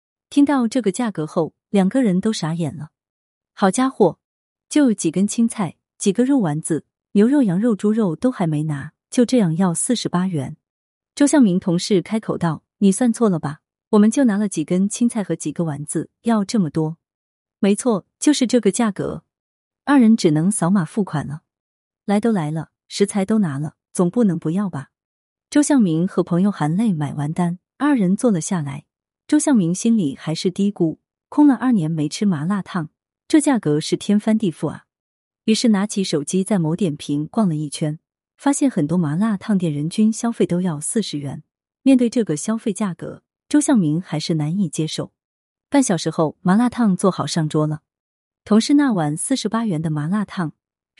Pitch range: 160-225 Hz